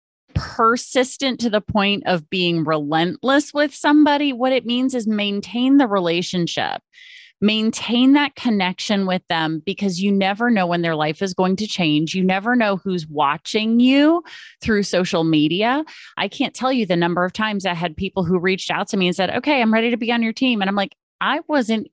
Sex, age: female, 30-49